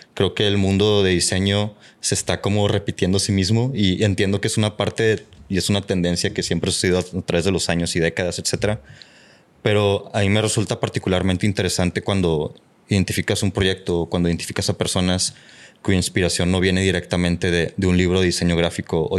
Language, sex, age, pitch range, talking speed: Spanish, male, 20-39, 90-100 Hz, 205 wpm